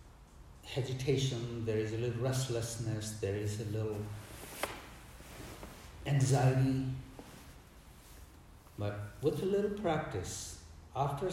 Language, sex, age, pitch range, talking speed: English, male, 60-79, 80-130 Hz, 90 wpm